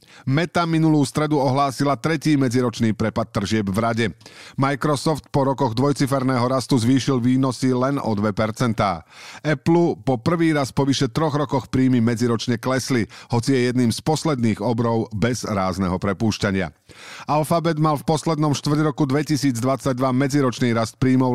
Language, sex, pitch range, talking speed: Slovak, male, 115-145 Hz, 140 wpm